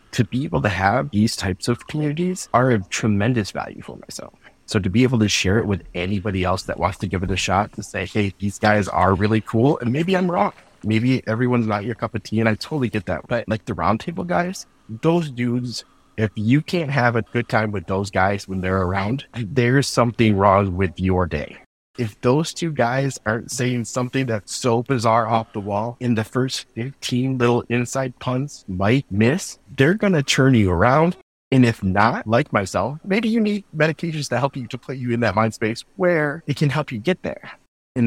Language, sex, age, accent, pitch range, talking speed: English, male, 30-49, American, 95-125 Hz, 215 wpm